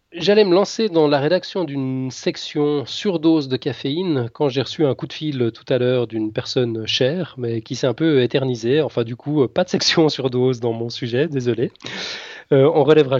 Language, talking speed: French, 200 wpm